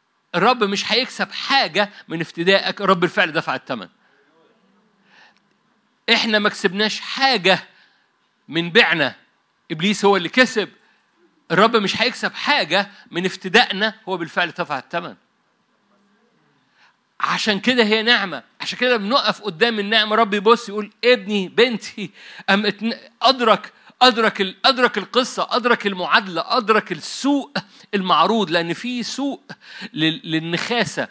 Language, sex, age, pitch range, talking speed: Arabic, male, 50-69, 175-230 Hz, 110 wpm